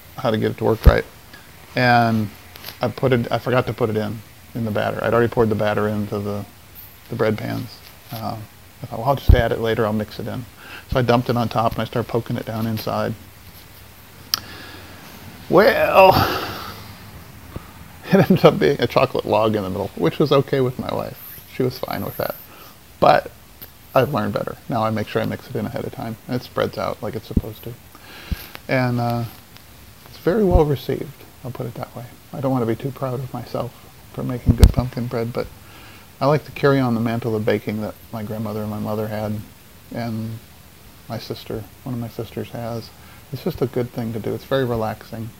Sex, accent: male, American